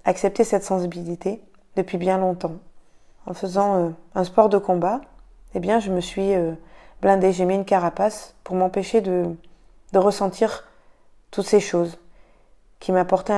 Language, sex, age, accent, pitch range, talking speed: French, female, 20-39, French, 175-200 Hz, 155 wpm